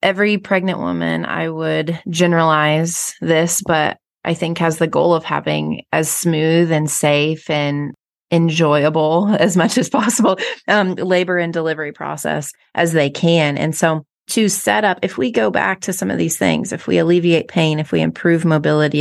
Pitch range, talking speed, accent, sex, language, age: 150-185 Hz, 175 wpm, American, female, English, 30-49